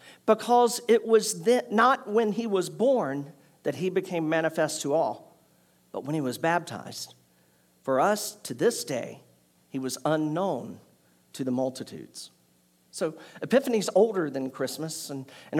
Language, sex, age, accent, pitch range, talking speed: English, male, 50-69, American, 160-220 Hz, 145 wpm